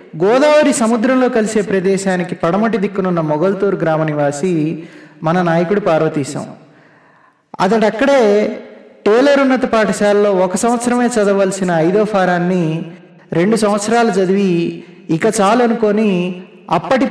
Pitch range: 180-230 Hz